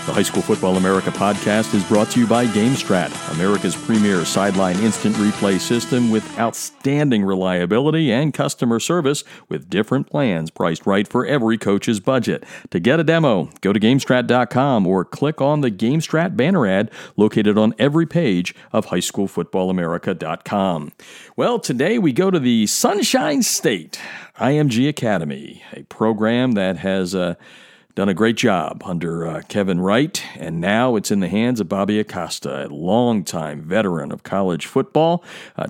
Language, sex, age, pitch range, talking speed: English, male, 50-69, 95-130 Hz, 155 wpm